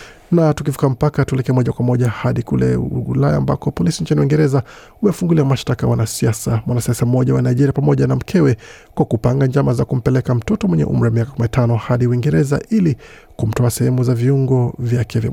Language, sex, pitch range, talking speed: Swahili, male, 115-140 Hz, 175 wpm